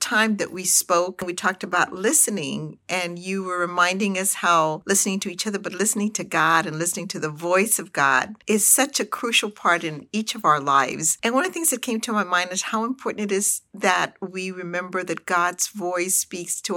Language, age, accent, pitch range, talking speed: English, 50-69, American, 175-210 Hz, 225 wpm